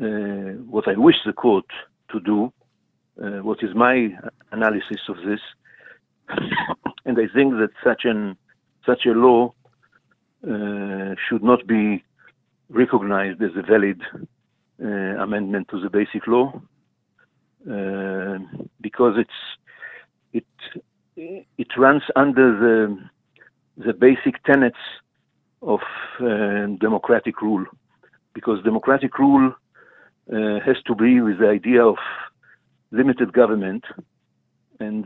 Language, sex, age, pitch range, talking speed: English, male, 50-69, 100-125 Hz, 115 wpm